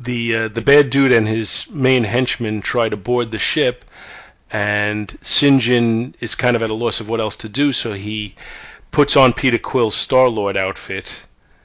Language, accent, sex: English, American, male